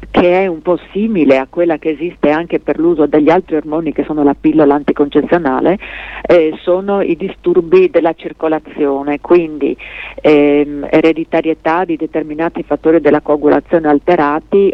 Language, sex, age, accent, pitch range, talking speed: Italian, female, 50-69, native, 150-175 Hz, 145 wpm